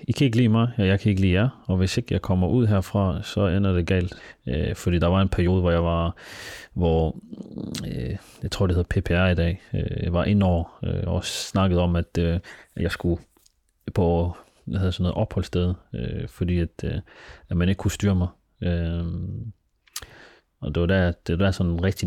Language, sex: Danish, male